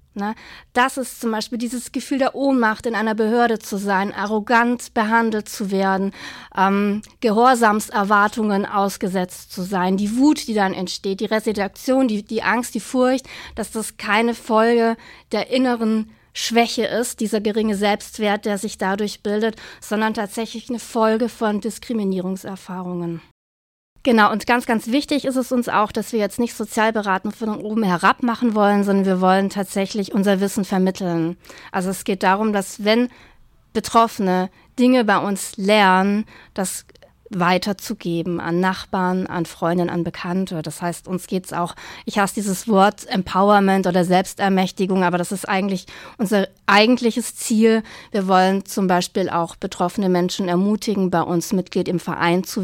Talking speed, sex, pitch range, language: 155 wpm, female, 185-225 Hz, German